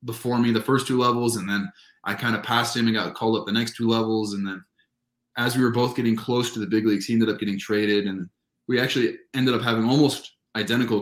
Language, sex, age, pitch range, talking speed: English, male, 20-39, 100-120 Hz, 250 wpm